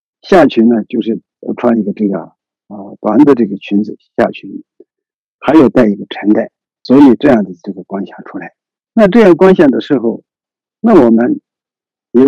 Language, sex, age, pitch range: Chinese, male, 50-69, 110-170 Hz